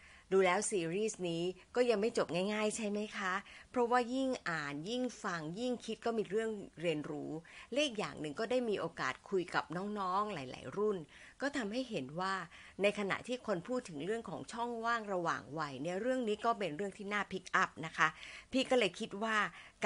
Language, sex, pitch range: Thai, female, 170-230 Hz